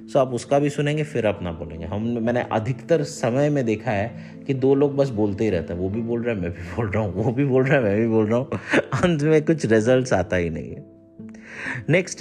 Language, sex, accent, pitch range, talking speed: English, male, Indian, 95-130 Hz, 185 wpm